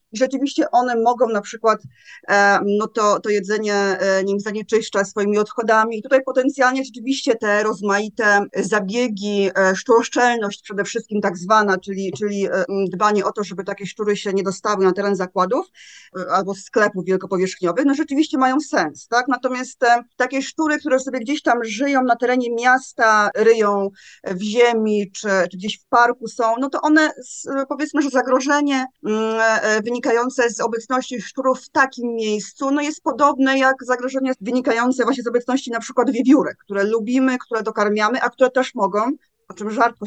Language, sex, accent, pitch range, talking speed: Polish, female, native, 210-265 Hz, 155 wpm